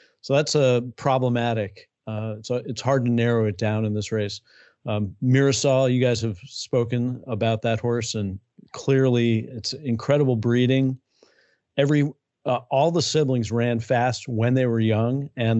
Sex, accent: male, American